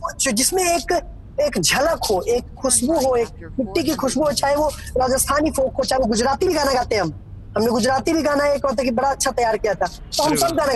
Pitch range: 255-300 Hz